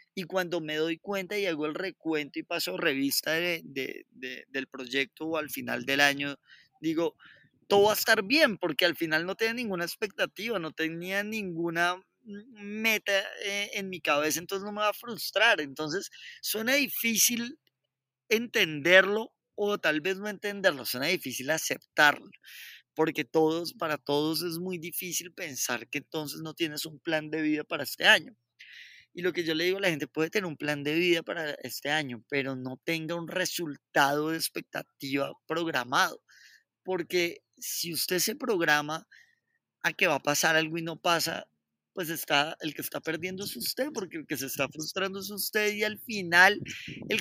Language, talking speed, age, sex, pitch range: Spanish, 175 wpm, 20-39, male, 155-205 Hz